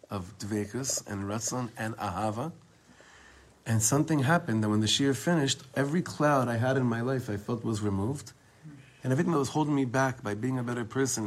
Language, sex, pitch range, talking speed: English, male, 110-140 Hz, 195 wpm